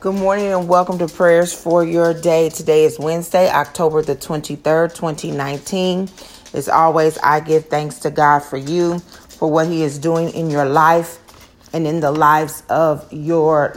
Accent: American